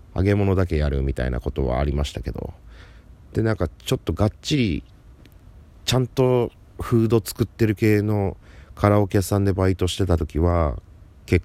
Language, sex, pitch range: Japanese, male, 75-100 Hz